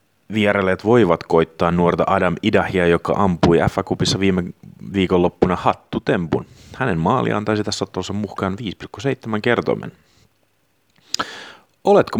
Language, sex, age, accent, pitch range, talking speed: Finnish, male, 30-49, native, 85-105 Hz, 105 wpm